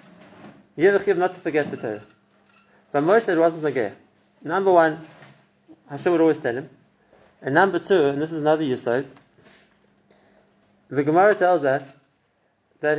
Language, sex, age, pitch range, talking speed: English, male, 30-49, 135-170 Hz, 150 wpm